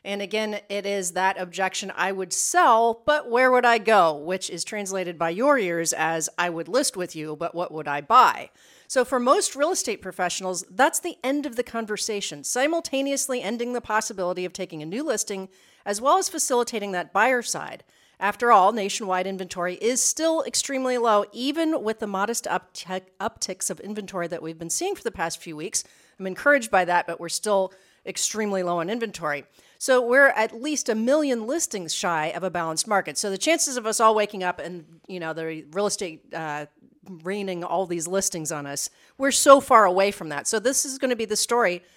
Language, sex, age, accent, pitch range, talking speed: English, female, 40-59, American, 180-255 Hz, 205 wpm